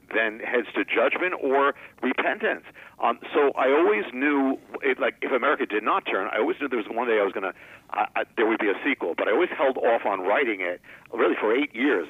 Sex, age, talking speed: male, 50-69, 235 wpm